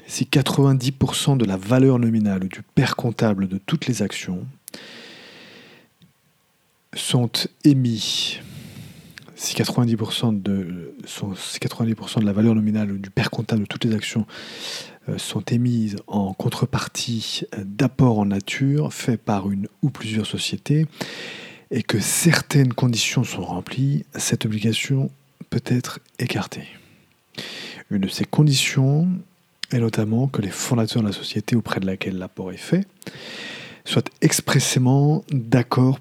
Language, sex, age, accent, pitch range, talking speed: English, male, 40-59, French, 105-135 Hz, 130 wpm